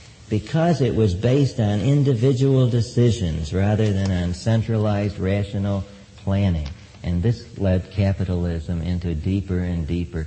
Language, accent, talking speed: English, American, 125 wpm